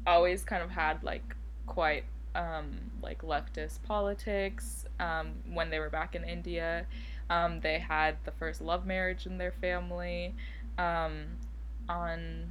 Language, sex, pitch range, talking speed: English, female, 145-200 Hz, 140 wpm